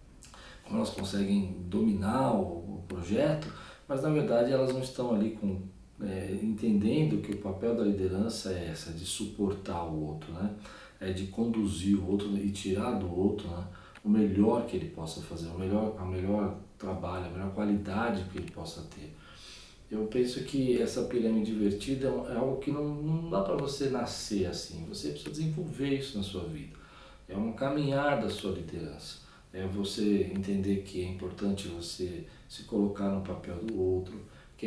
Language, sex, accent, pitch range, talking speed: Portuguese, male, Brazilian, 95-110 Hz, 170 wpm